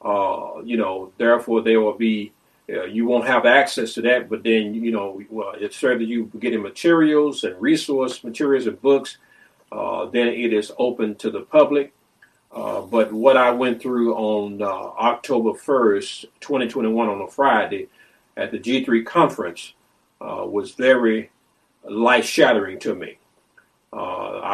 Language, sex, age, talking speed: English, male, 50-69, 150 wpm